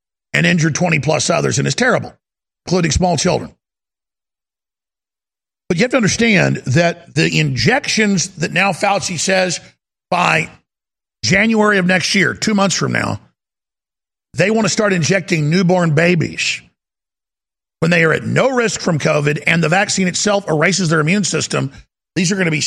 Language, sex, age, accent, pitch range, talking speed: English, male, 50-69, American, 170-205 Hz, 155 wpm